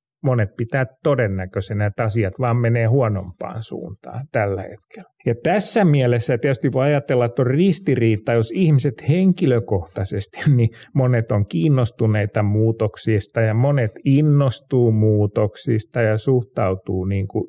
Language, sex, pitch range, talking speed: Finnish, male, 110-135 Hz, 115 wpm